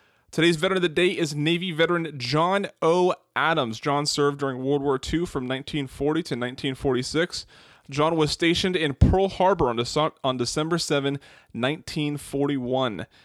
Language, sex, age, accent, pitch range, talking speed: English, male, 30-49, American, 135-165 Hz, 140 wpm